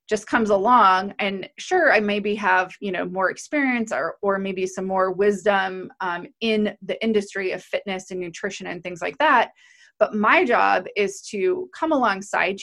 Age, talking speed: 20-39, 175 wpm